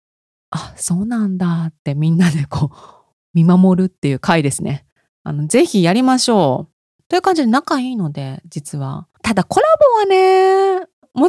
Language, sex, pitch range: Japanese, female, 155-225 Hz